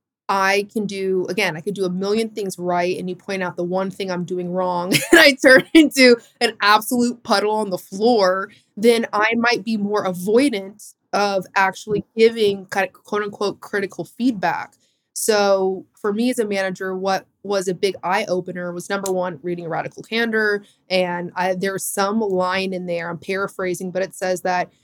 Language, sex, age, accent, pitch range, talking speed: English, female, 20-39, American, 180-210 Hz, 185 wpm